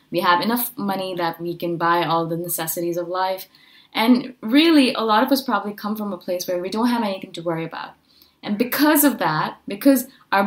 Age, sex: 20-39, female